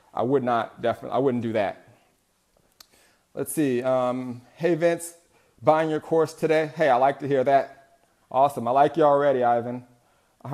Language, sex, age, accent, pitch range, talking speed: English, male, 30-49, American, 125-160 Hz, 170 wpm